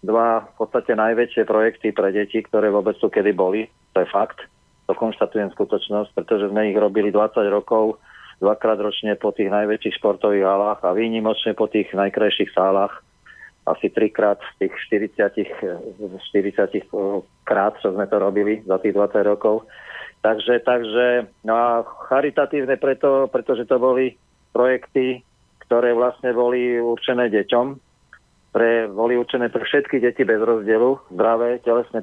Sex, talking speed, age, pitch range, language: male, 140 wpm, 40-59, 105-120 Hz, Slovak